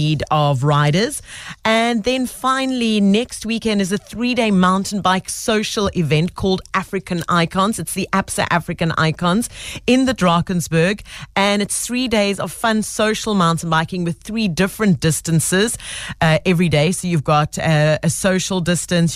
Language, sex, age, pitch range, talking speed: English, female, 40-59, 160-195 Hz, 150 wpm